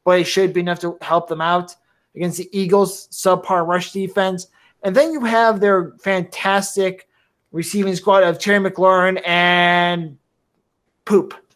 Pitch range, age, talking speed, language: 175-210 Hz, 20-39, 145 wpm, English